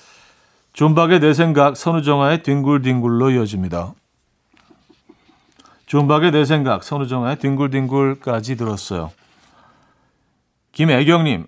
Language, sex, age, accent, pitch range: Korean, male, 40-59, native, 130-170 Hz